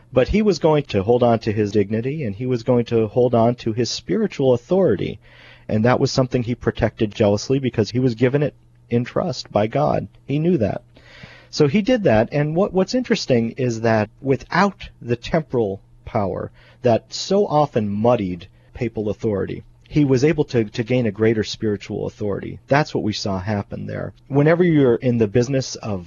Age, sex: 40-59, male